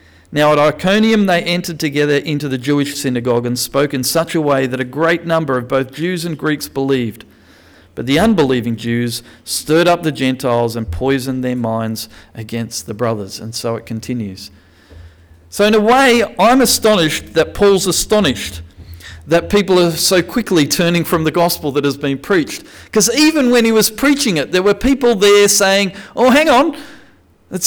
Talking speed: 180 wpm